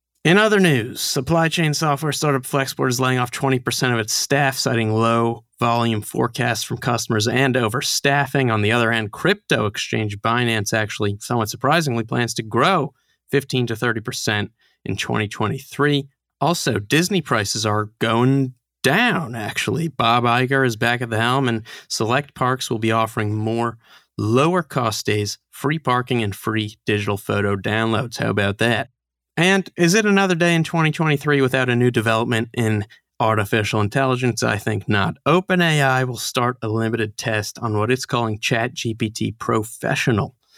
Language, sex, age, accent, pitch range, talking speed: English, male, 30-49, American, 110-140 Hz, 155 wpm